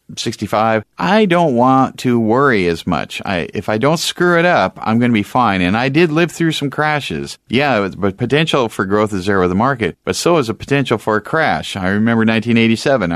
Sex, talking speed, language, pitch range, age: male, 225 wpm, English, 90-120 Hz, 40-59